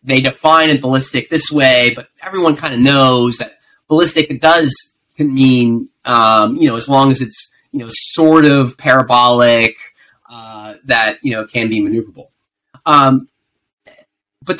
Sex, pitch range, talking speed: male, 130-170 Hz, 155 wpm